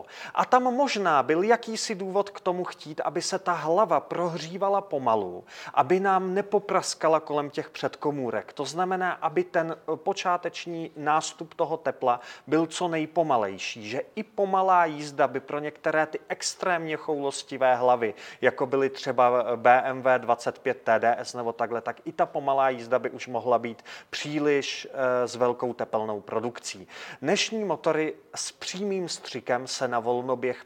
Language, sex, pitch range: Czech, male, 130-185 Hz